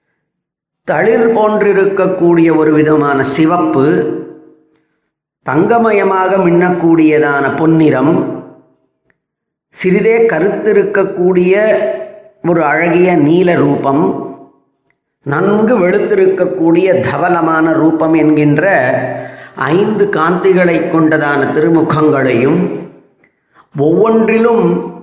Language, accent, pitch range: Tamil, native, 155-195 Hz